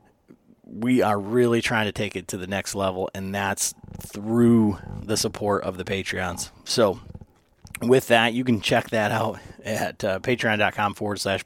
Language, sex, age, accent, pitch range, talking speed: English, male, 30-49, American, 95-115 Hz, 170 wpm